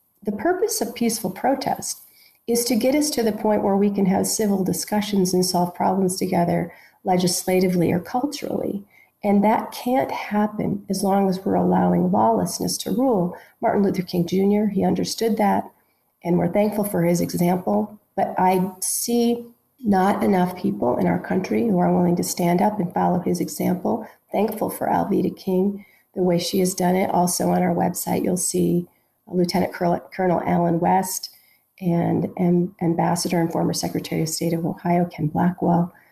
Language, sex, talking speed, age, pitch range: English, female, 170 wpm, 40-59, 175-215 Hz